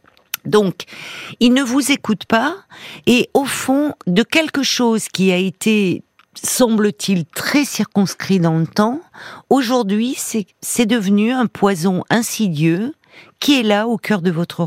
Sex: female